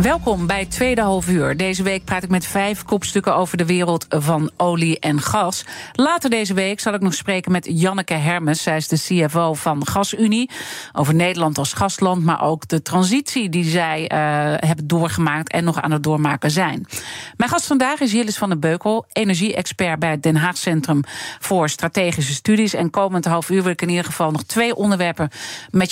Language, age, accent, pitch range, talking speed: Dutch, 40-59, Dutch, 165-210 Hz, 195 wpm